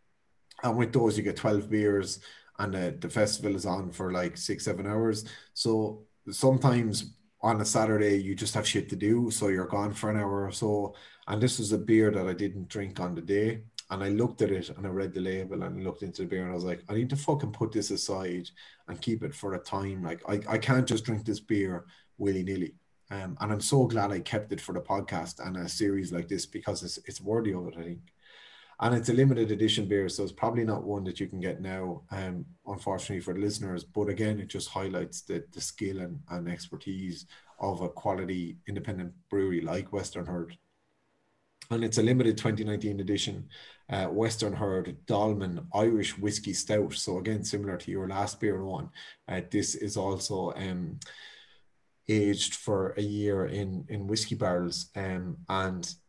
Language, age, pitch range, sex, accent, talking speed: English, 30-49, 95-110 Hz, male, Irish, 205 wpm